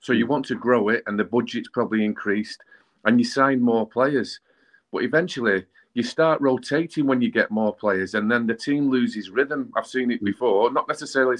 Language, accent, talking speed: English, British, 200 wpm